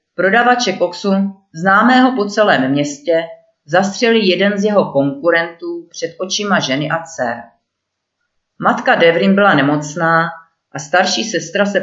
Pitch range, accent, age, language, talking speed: 155-205 Hz, native, 40-59, Czech, 120 wpm